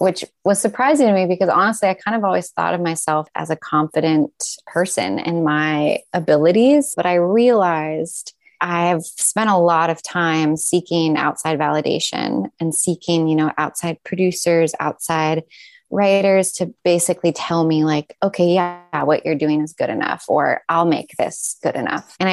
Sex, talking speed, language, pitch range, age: female, 165 wpm, English, 160-200 Hz, 20-39